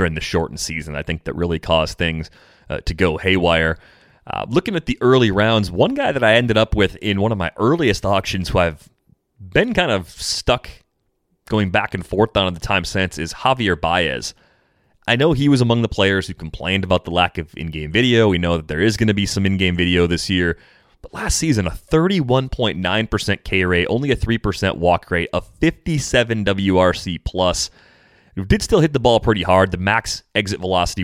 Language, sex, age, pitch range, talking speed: English, male, 30-49, 85-105 Hz, 205 wpm